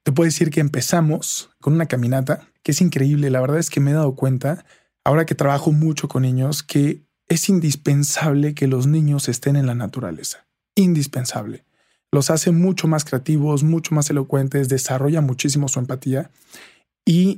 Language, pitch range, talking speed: Spanish, 135-160 Hz, 170 wpm